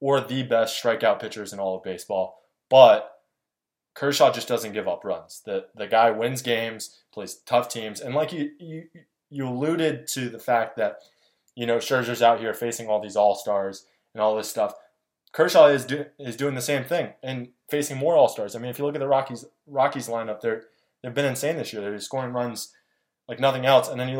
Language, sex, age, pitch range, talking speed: English, male, 20-39, 110-135 Hz, 210 wpm